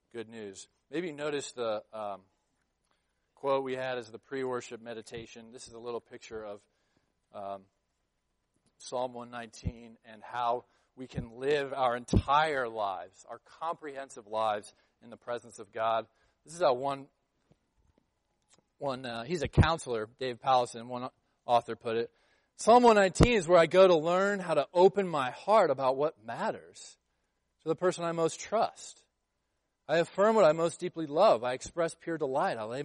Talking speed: 165 wpm